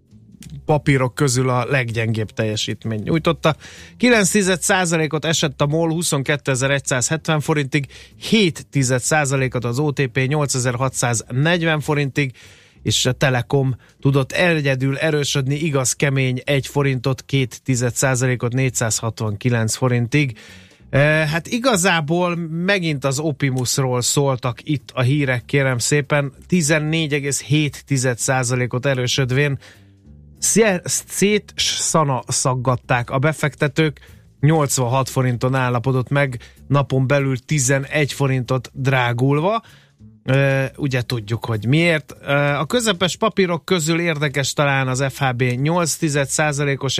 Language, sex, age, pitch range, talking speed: Hungarian, male, 30-49, 125-155 Hz, 95 wpm